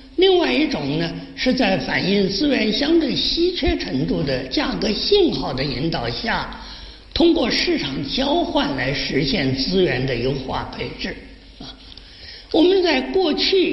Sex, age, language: male, 50-69, Chinese